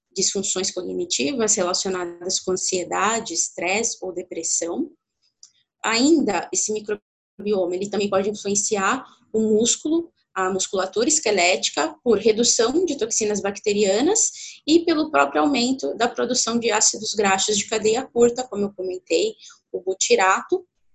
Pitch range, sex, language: 180-235 Hz, female, Portuguese